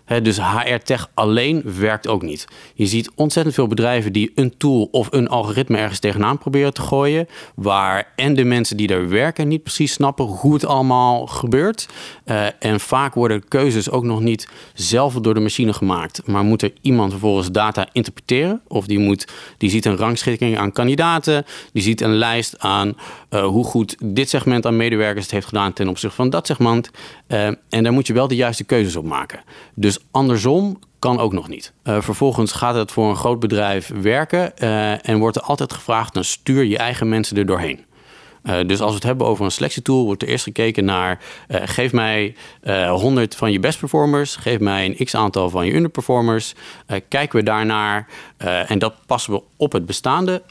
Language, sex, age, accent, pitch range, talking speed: Dutch, male, 40-59, Dutch, 100-130 Hz, 200 wpm